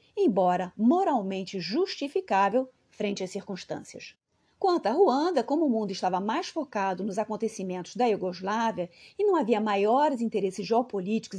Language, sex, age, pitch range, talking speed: Portuguese, female, 30-49, 200-280 Hz, 130 wpm